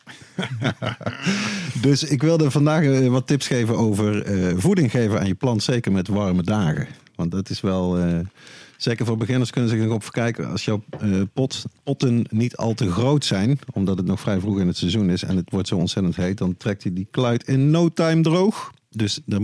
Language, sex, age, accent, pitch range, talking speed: Dutch, male, 40-59, Dutch, 90-120 Hz, 205 wpm